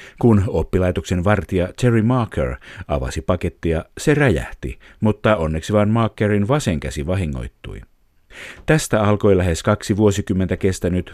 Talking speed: 120 wpm